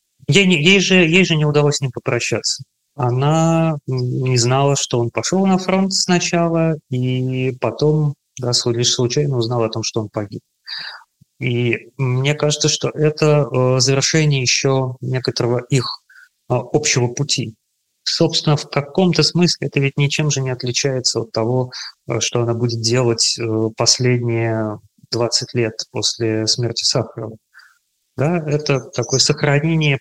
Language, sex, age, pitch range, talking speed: English, male, 20-39, 120-150 Hz, 135 wpm